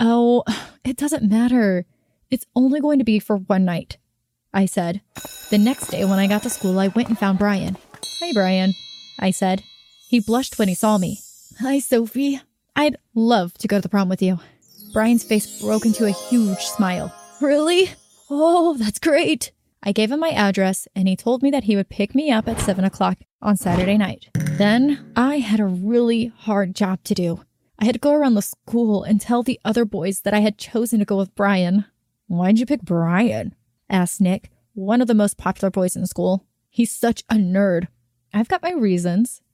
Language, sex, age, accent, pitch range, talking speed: English, female, 20-39, American, 190-235 Hz, 200 wpm